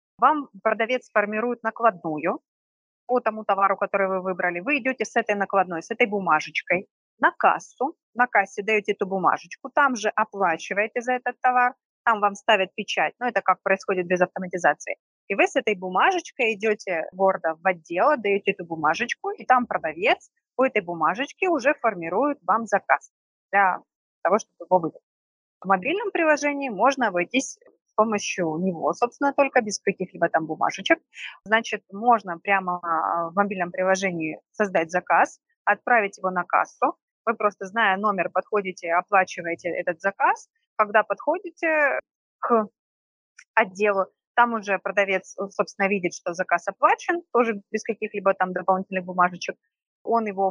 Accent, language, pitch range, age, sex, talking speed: native, Russian, 190-250 Hz, 30-49, female, 145 wpm